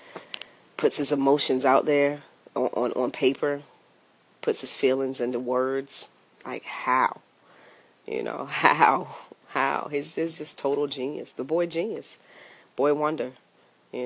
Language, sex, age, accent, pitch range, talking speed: English, female, 30-49, American, 130-150 Hz, 130 wpm